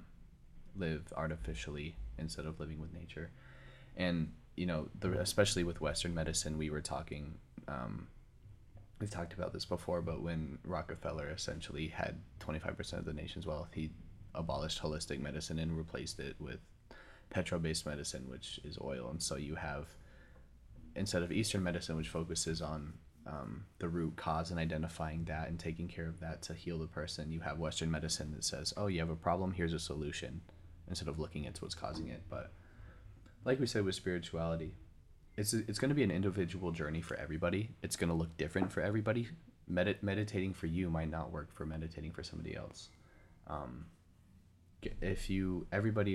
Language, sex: English, male